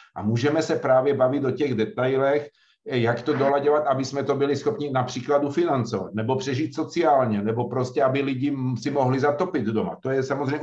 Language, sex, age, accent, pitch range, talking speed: Czech, male, 50-69, native, 125-155 Hz, 180 wpm